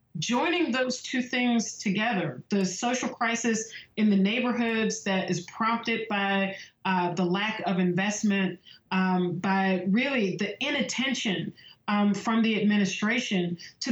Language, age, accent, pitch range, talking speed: English, 30-49, American, 190-225 Hz, 130 wpm